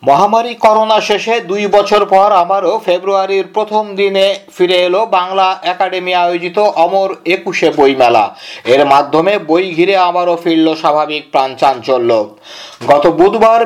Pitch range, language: 170-200 Hz, Bengali